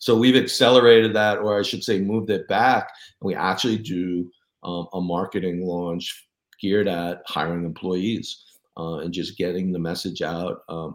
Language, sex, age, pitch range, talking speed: English, male, 40-59, 90-105 Hz, 170 wpm